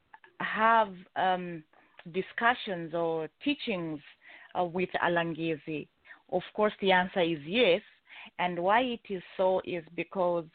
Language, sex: English, female